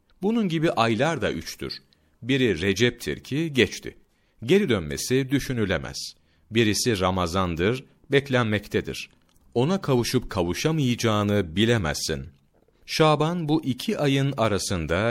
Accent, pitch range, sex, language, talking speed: native, 85-130 Hz, male, Turkish, 95 wpm